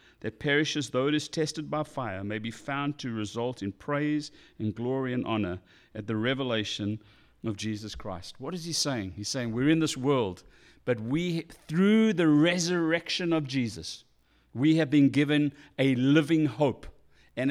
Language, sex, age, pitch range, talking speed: English, male, 50-69, 115-155 Hz, 170 wpm